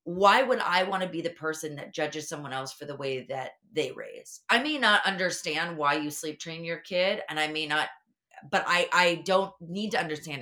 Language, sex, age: English, female, 30-49